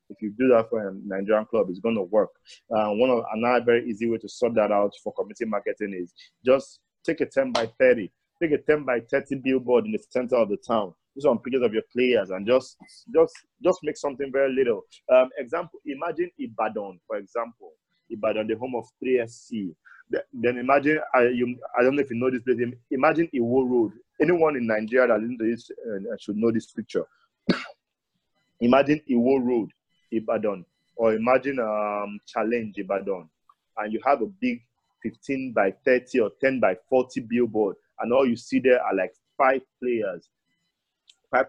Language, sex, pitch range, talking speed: English, male, 110-135 Hz, 180 wpm